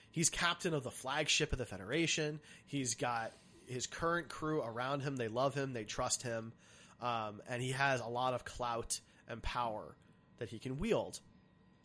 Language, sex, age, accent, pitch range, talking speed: English, male, 30-49, American, 120-150 Hz, 175 wpm